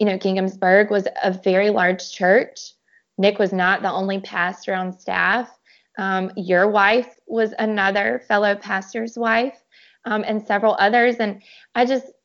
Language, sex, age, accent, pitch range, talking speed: English, female, 20-39, American, 195-225 Hz, 150 wpm